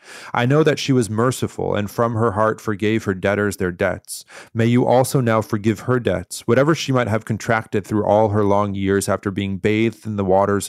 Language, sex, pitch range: English, male, 100-120 Hz